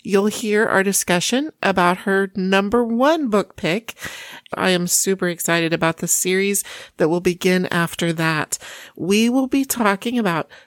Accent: American